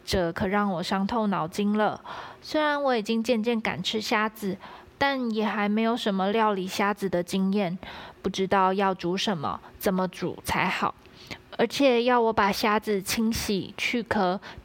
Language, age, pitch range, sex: Chinese, 20-39, 190-225 Hz, female